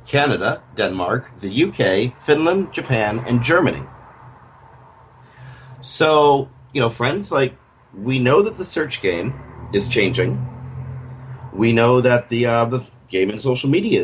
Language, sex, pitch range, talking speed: English, male, 110-130 Hz, 135 wpm